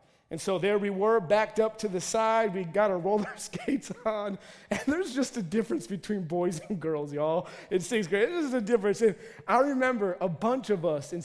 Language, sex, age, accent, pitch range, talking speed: English, male, 30-49, American, 190-245 Hz, 210 wpm